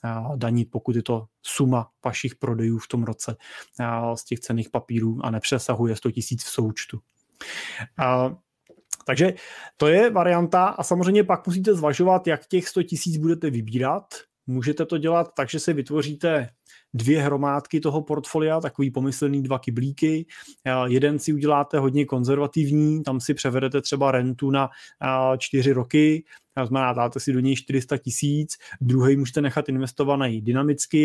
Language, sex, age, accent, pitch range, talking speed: Czech, male, 30-49, native, 125-150 Hz, 145 wpm